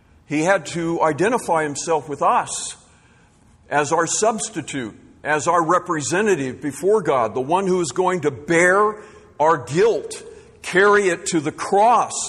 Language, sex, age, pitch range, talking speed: English, male, 50-69, 115-175 Hz, 140 wpm